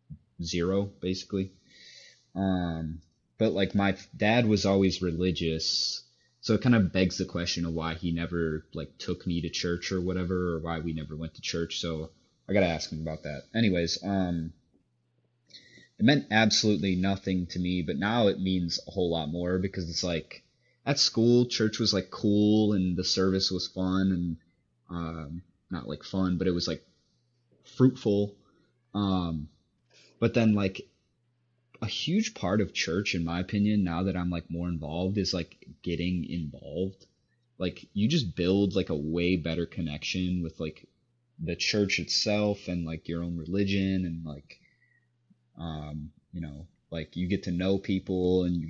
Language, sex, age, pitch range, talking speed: English, male, 20-39, 80-95 Hz, 170 wpm